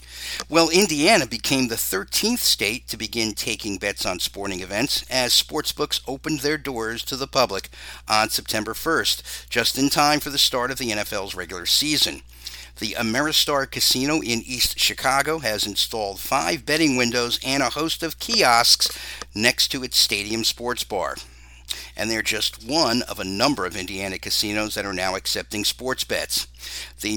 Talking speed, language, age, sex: 165 wpm, English, 50-69, male